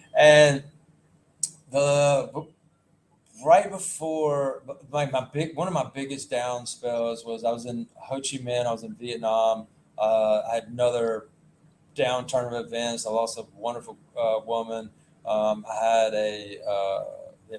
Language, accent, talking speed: English, American, 145 wpm